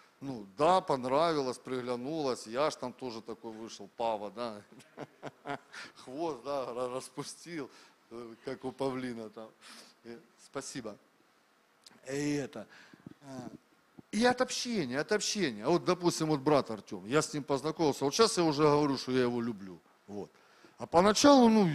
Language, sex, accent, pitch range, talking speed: Russian, male, native, 135-200 Hz, 135 wpm